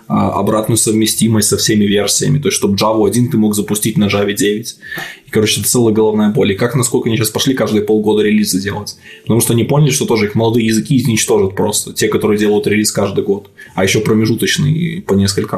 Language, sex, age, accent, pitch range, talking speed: Russian, male, 20-39, native, 105-125 Hz, 205 wpm